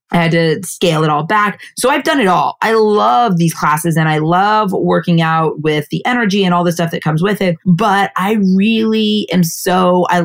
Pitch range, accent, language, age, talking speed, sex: 155-195 Hz, American, English, 20-39, 225 wpm, female